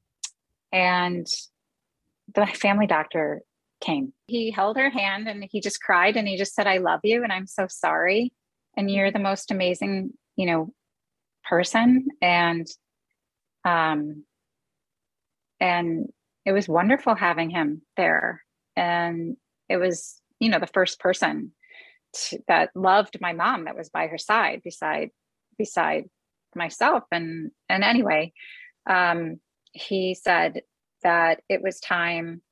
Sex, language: female, English